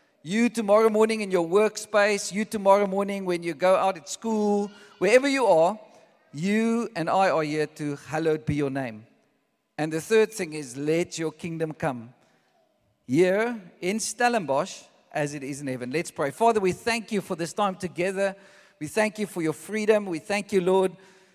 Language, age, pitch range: English, 50-69, 150-205 Hz